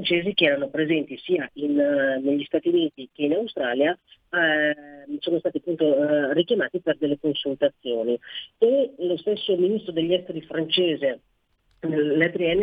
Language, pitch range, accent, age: Italian, 145-180 Hz, native, 30-49